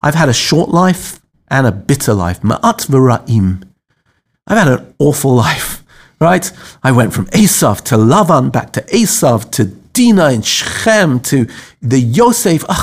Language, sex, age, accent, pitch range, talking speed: English, male, 50-69, British, 120-170 Hz, 155 wpm